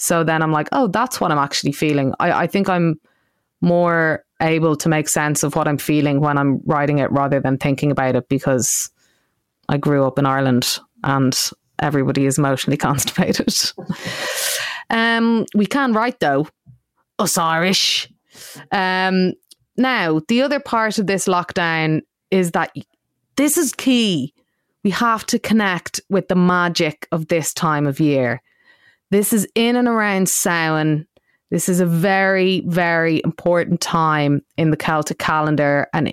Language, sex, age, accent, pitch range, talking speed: English, female, 30-49, Irish, 155-190 Hz, 155 wpm